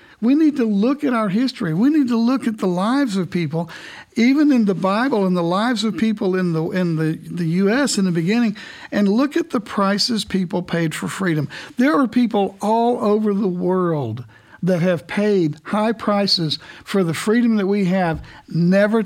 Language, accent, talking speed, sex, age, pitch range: English, American, 195 wpm, male, 60-79, 170-225 Hz